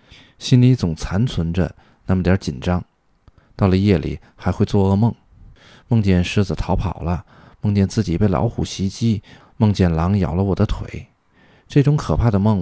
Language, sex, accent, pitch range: Chinese, male, native, 90-110 Hz